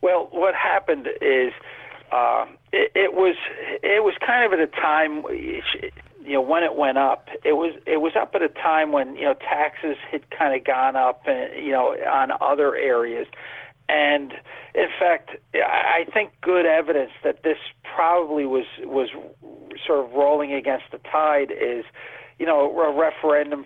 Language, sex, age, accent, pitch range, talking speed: English, male, 50-69, American, 135-190 Hz, 170 wpm